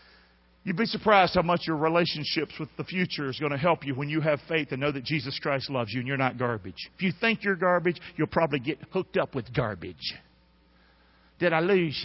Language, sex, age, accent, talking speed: English, male, 50-69, American, 225 wpm